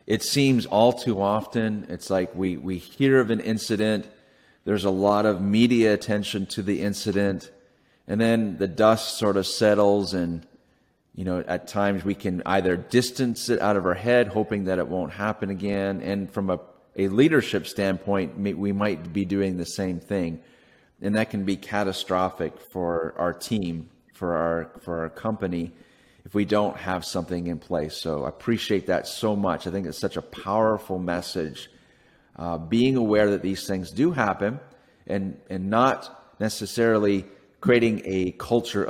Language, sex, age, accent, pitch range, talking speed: English, male, 30-49, American, 90-110 Hz, 170 wpm